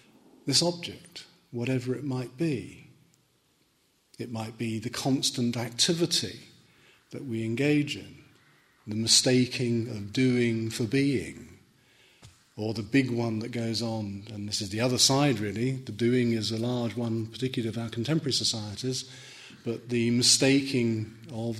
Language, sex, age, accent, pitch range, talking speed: English, male, 40-59, British, 110-125 Hz, 140 wpm